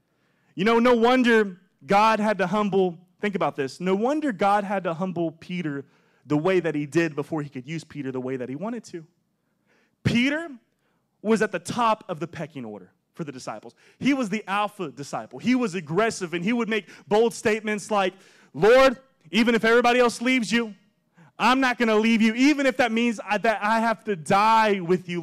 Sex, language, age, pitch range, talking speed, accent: male, English, 20-39, 160-215 Hz, 200 wpm, American